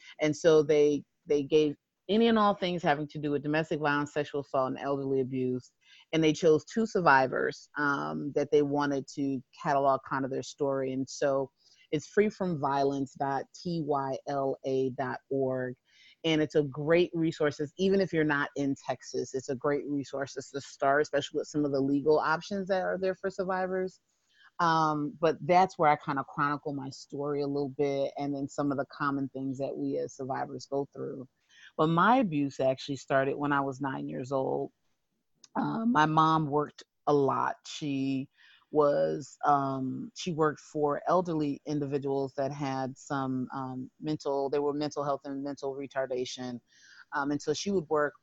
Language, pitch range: English, 135-155 Hz